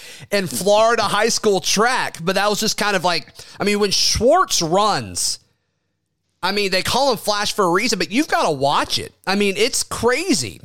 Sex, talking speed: male, 205 wpm